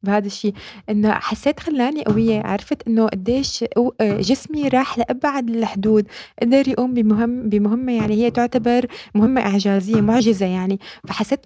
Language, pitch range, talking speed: Arabic, 215-245 Hz, 130 wpm